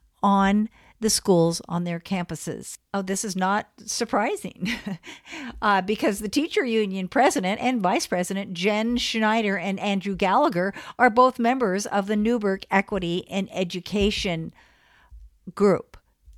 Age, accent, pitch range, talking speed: 50-69, American, 175-215 Hz, 130 wpm